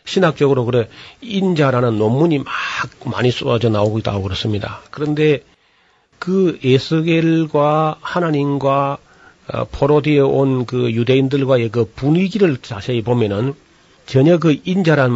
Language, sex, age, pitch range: Korean, male, 40-59, 115-150 Hz